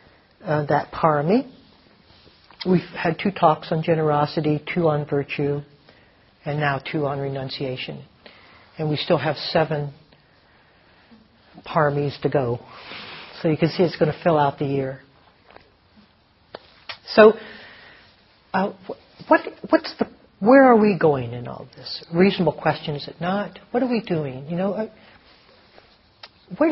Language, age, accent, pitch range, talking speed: English, 60-79, American, 150-205 Hz, 135 wpm